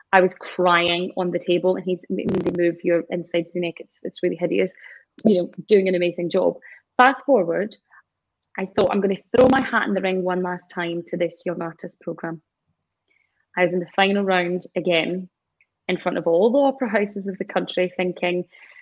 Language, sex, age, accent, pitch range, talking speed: English, female, 20-39, British, 175-200 Hz, 200 wpm